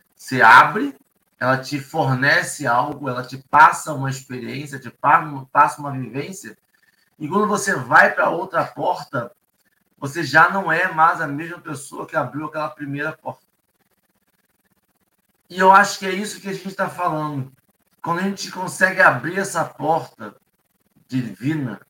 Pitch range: 135-180 Hz